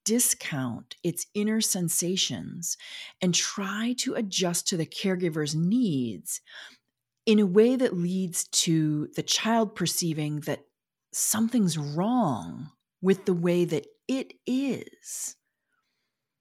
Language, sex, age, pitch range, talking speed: English, female, 30-49, 150-205 Hz, 110 wpm